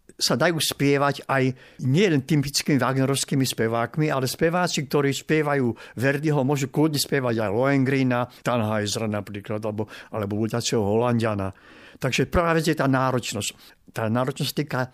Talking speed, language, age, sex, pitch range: 135 wpm, Slovak, 60-79, male, 120-155 Hz